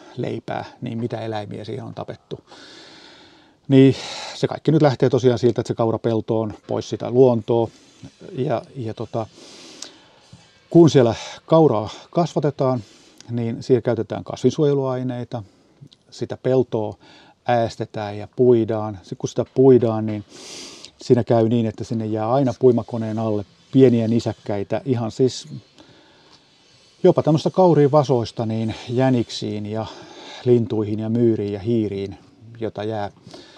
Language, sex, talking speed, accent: Finnish, male, 125 wpm, native